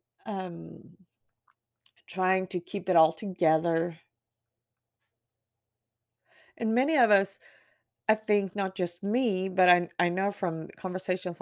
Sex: female